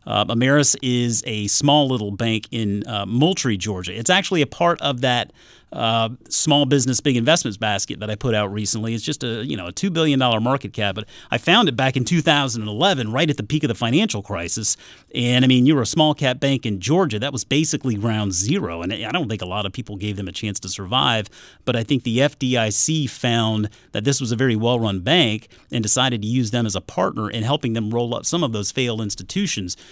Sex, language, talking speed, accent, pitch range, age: male, English, 235 wpm, American, 105-135 Hz, 40-59